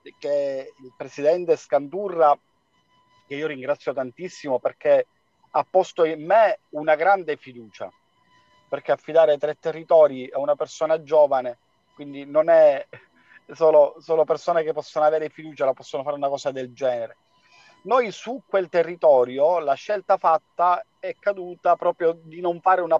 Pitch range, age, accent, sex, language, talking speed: 140-190 Hz, 40-59, native, male, Italian, 145 wpm